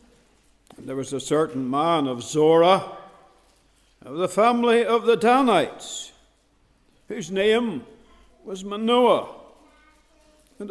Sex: male